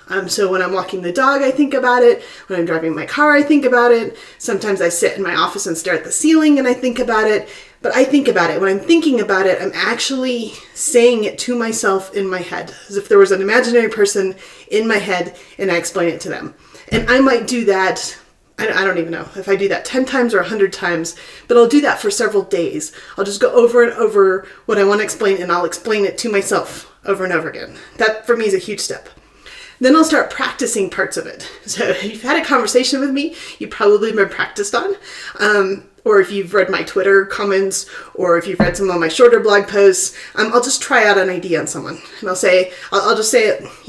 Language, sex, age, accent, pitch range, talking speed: English, female, 30-49, American, 190-255 Hz, 245 wpm